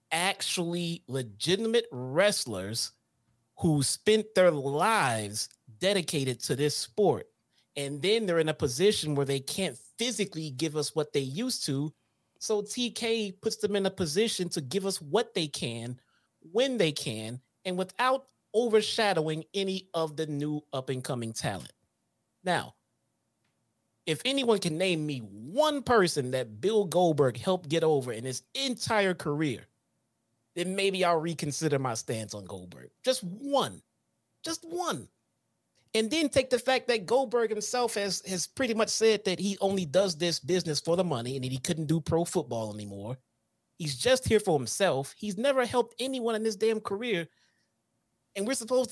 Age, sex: 30-49, male